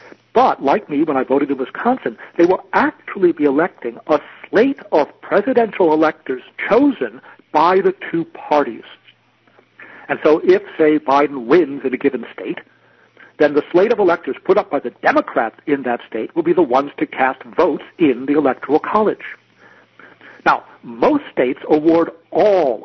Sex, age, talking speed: male, 60-79, 165 wpm